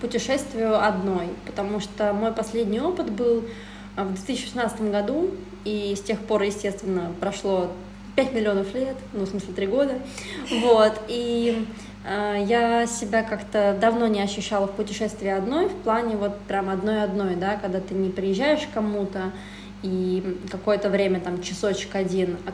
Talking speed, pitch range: 150 wpm, 195-230 Hz